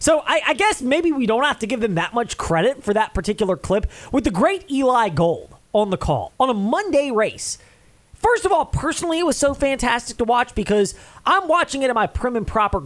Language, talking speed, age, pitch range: English, 230 wpm, 20-39, 195-280 Hz